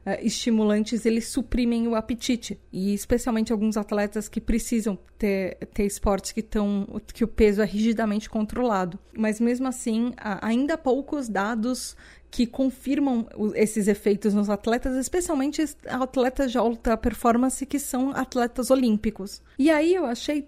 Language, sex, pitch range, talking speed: Portuguese, female, 215-260 Hz, 140 wpm